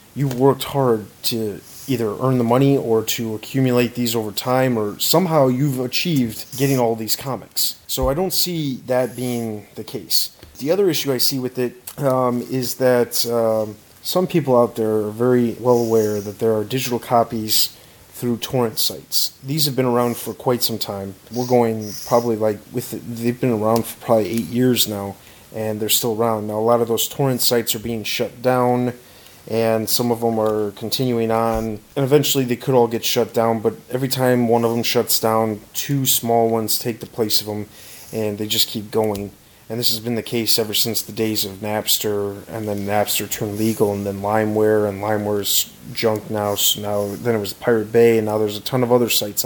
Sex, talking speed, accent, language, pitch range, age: male, 205 wpm, American, English, 110-125 Hz, 30-49